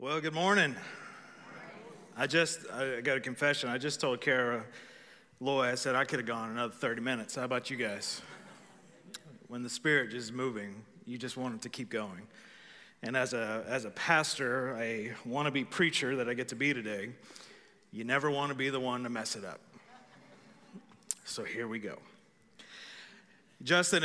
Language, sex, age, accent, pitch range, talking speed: English, male, 40-59, American, 130-165 Hz, 175 wpm